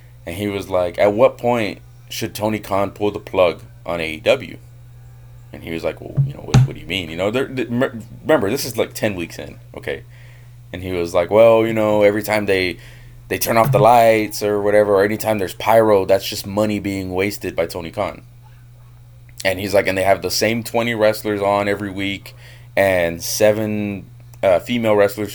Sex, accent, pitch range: male, American, 100-120 Hz